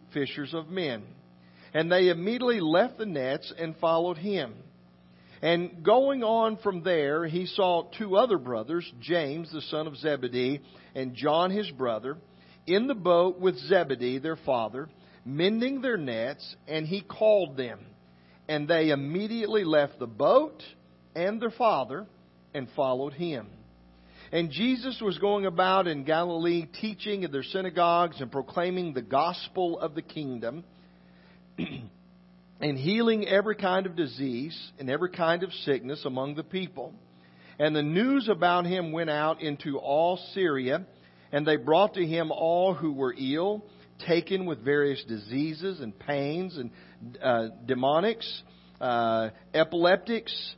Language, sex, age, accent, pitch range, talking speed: English, male, 50-69, American, 130-185 Hz, 140 wpm